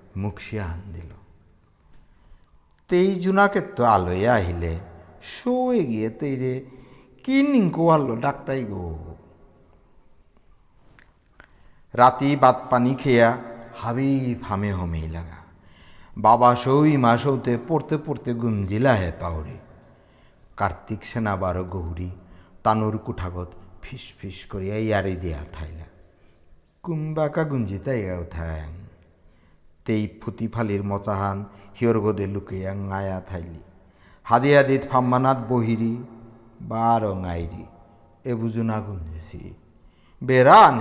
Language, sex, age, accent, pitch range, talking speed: Bengali, male, 60-79, native, 90-120 Hz, 80 wpm